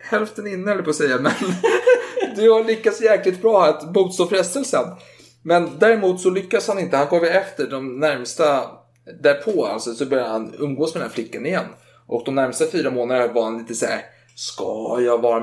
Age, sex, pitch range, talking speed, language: 30-49, male, 120-185 Hz, 195 wpm, Swedish